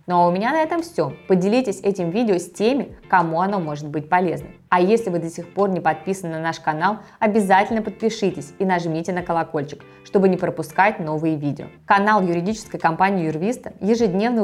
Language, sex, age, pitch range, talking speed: Russian, female, 20-39, 165-210 Hz, 185 wpm